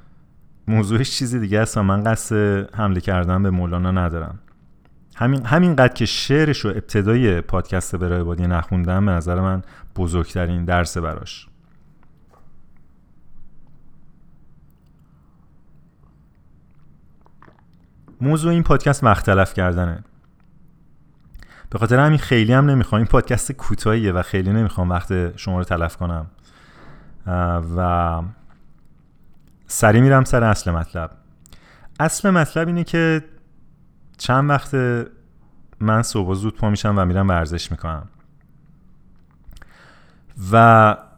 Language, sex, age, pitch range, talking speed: Persian, male, 30-49, 90-130 Hz, 105 wpm